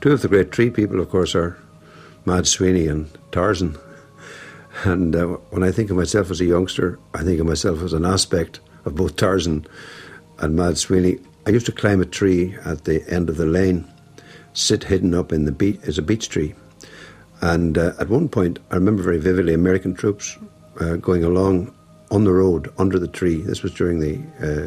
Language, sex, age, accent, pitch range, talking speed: English, male, 60-79, Irish, 80-95 Hz, 200 wpm